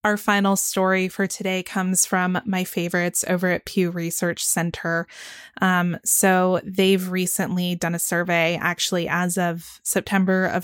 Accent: American